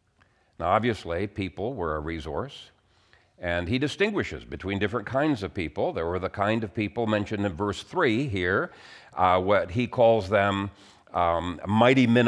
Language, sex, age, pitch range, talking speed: English, male, 50-69, 95-120 Hz, 160 wpm